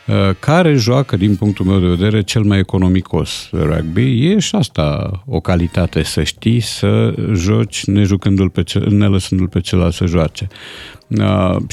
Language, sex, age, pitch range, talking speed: Romanian, male, 50-69, 90-115 Hz, 160 wpm